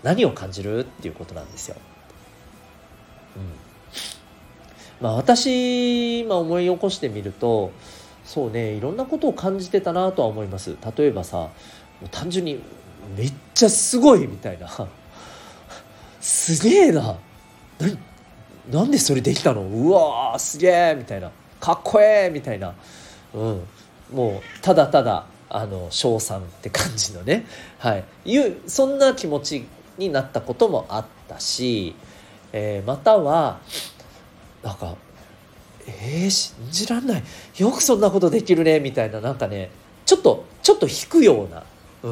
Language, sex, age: Japanese, male, 40-59